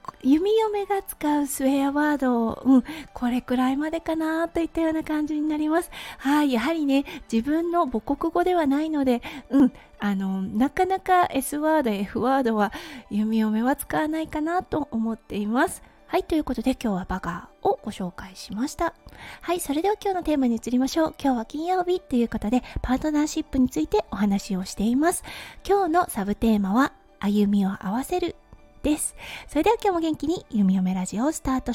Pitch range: 225-310 Hz